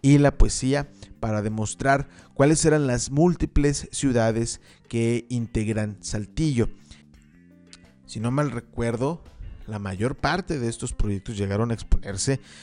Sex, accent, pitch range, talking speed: male, Mexican, 110-135 Hz, 125 wpm